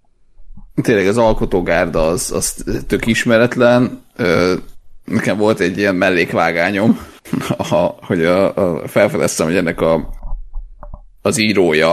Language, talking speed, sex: Hungarian, 95 wpm, male